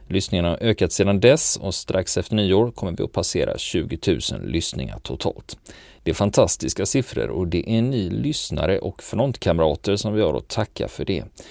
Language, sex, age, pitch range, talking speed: Swedish, male, 40-59, 85-110 Hz, 185 wpm